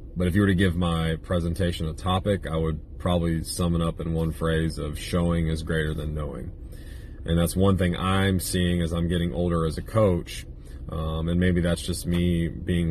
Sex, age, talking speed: male, 30-49, 210 wpm